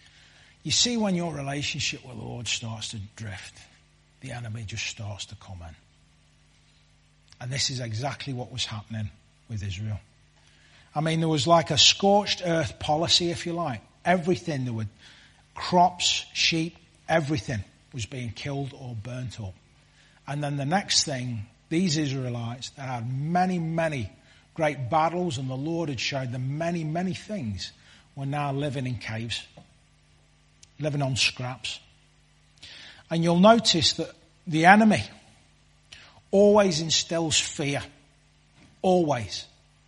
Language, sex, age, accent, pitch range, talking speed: English, male, 40-59, British, 105-160 Hz, 135 wpm